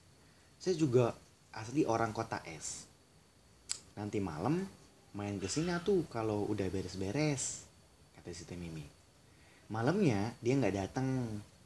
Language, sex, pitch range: Indonesian, male, 95-145 Hz